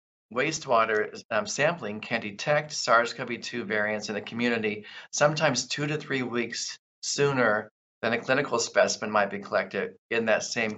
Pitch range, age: 105-130 Hz, 50-69